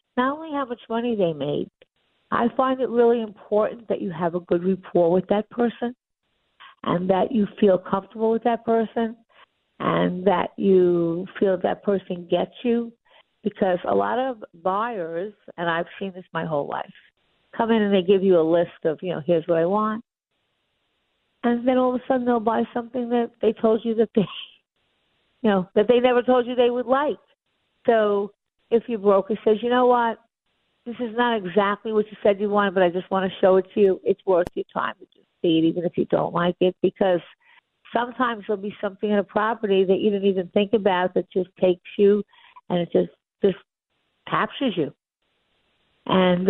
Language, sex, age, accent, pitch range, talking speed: English, female, 50-69, American, 185-235 Hz, 200 wpm